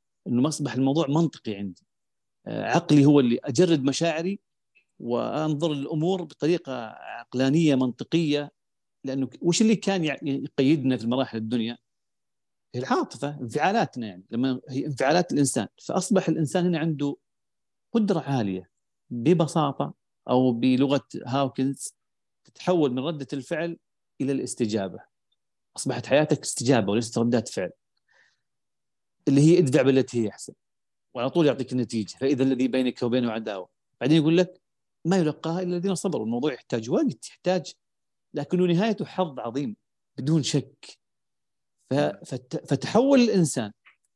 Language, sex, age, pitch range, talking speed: Arabic, male, 40-59, 130-170 Hz, 120 wpm